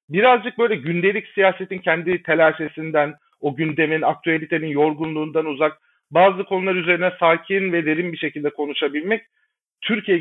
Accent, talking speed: native, 125 wpm